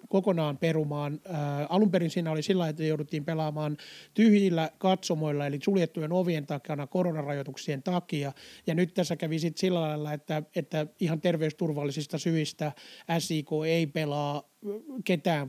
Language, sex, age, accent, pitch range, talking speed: Finnish, male, 30-49, native, 150-175 Hz, 130 wpm